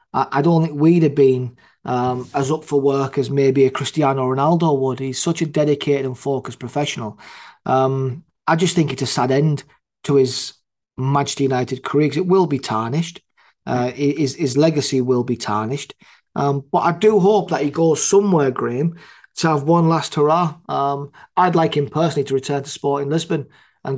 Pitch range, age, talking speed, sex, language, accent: 135-165 Hz, 30-49, 190 wpm, male, English, British